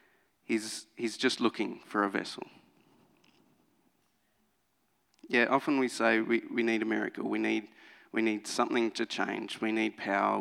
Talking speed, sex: 150 wpm, male